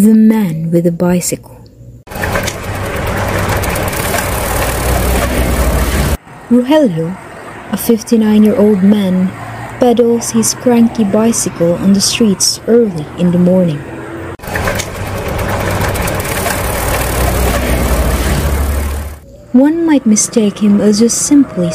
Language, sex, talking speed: Filipino, female, 90 wpm